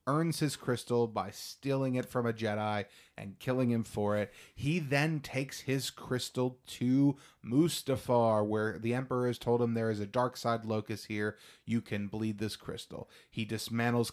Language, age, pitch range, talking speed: English, 30-49, 110-125 Hz, 175 wpm